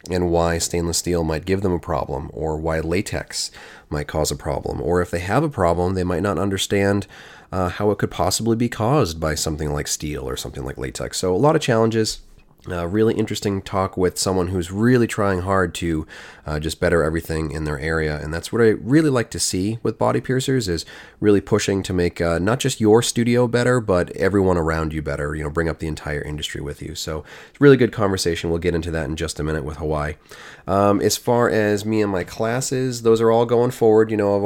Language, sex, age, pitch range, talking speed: English, male, 30-49, 80-110 Hz, 230 wpm